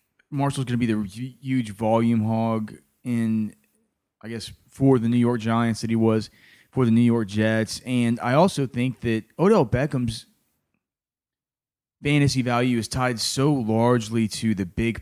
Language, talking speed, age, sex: English, 160 wpm, 30-49, male